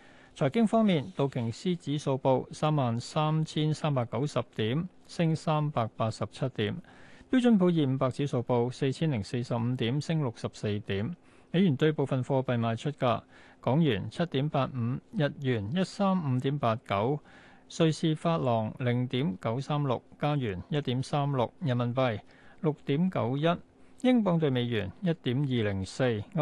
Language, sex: Chinese, male